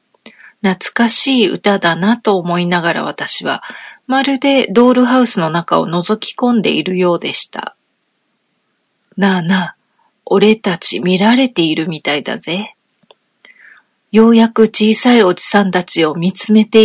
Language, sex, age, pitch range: Japanese, female, 40-59, 175-230 Hz